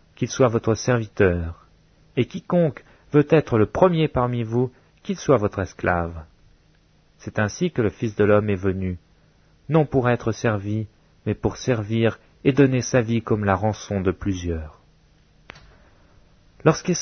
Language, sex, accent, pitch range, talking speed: French, male, French, 100-135 Hz, 155 wpm